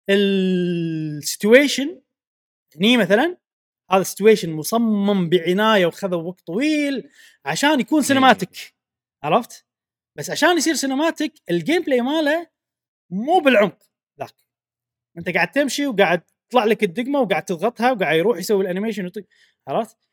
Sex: male